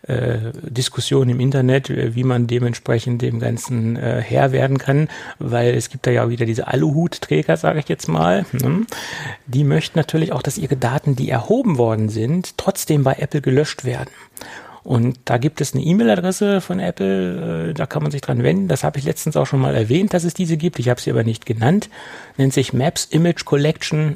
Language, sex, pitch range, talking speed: German, male, 125-155 Hz, 200 wpm